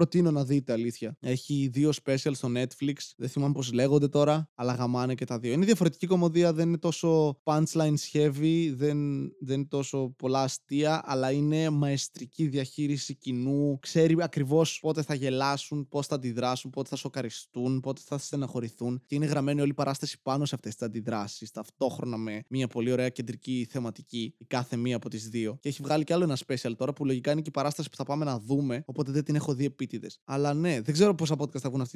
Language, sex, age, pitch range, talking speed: Greek, male, 20-39, 130-155 Hz, 205 wpm